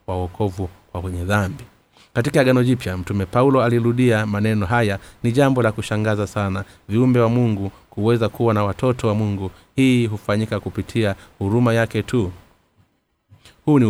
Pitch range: 100-120 Hz